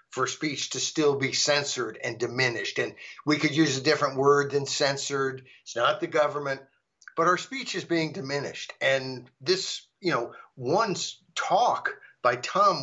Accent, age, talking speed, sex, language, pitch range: American, 50-69, 165 wpm, male, English, 145-205 Hz